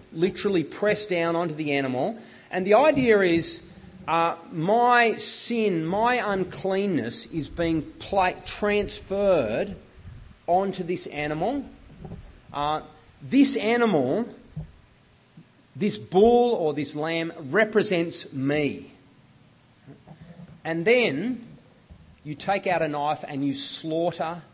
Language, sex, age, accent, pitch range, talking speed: English, male, 30-49, Australian, 150-205 Hz, 100 wpm